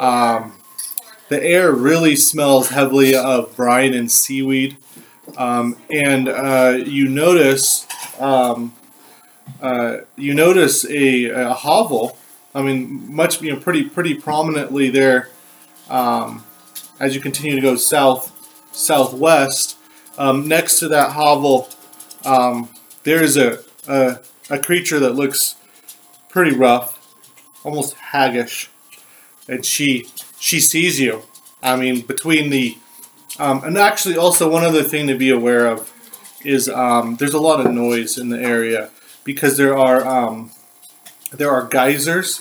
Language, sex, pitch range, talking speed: English, male, 130-155 Hz, 135 wpm